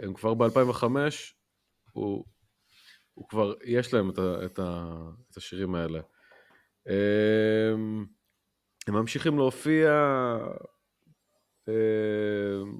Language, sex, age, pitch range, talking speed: Hebrew, male, 30-49, 100-130 Hz, 95 wpm